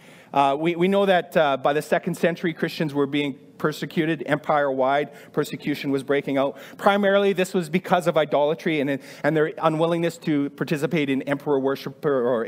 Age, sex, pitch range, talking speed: 40-59, male, 140-195 Hz, 170 wpm